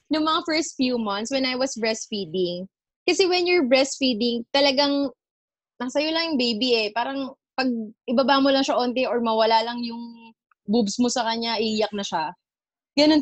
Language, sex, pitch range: Filipino, female, 225-275 Hz